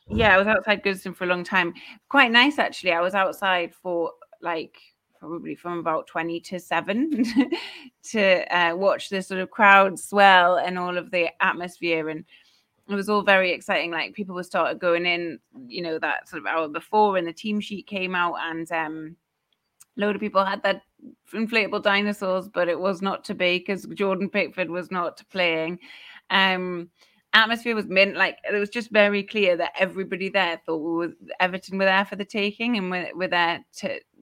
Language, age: English, 30-49